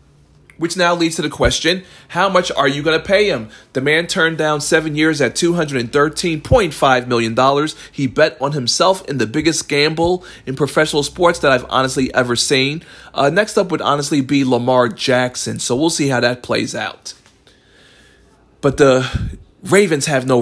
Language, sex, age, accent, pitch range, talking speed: English, male, 40-59, American, 130-180 Hz, 175 wpm